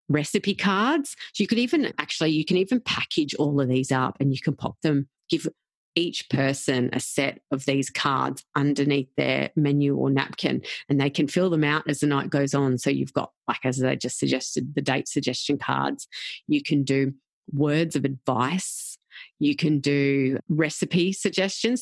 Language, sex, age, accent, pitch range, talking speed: English, female, 30-49, Australian, 140-185 Hz, 185 wpm